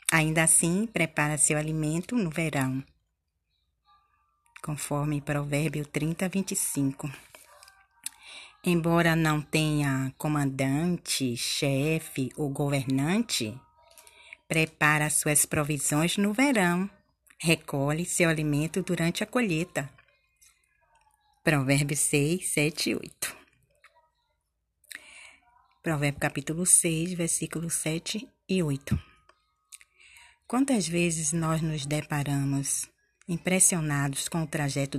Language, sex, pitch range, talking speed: Portuguese, female, 140-175 Hz, 85 wpm